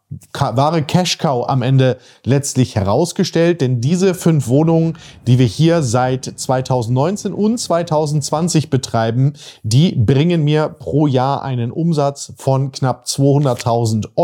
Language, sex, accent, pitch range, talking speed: German, male, German, 125-170 Hz, 120 wpm